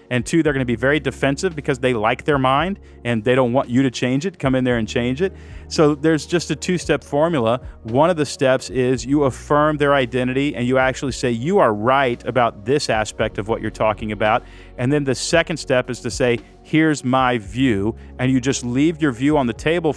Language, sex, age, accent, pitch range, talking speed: English, male, 40-59, American, 120-155 Hz, 230 wpm